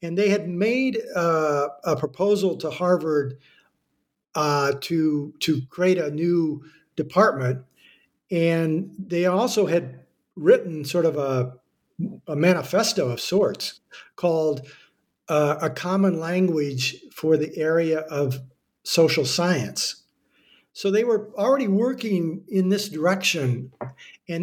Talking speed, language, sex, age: 120 wpm, English, male, 60-79